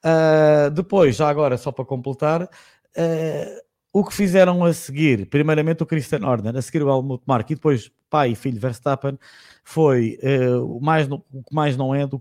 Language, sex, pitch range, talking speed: Portuguese, male, 125-155 Hz, 165 wpm